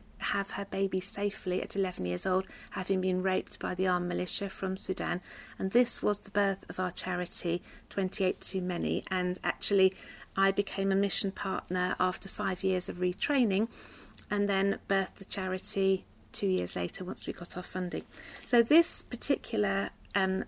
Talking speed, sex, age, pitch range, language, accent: 165 wpm, female, 40-59, 185-210 Hz, English, British